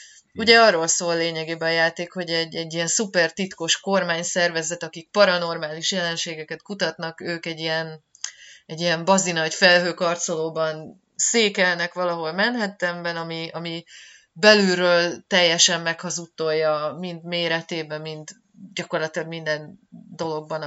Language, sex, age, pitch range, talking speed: Hungarian, female, 30-49, 165-200 Hz, 115 wpm